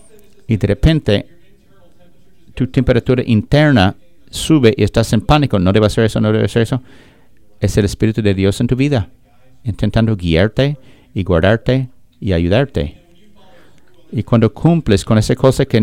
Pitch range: 105-130 Hz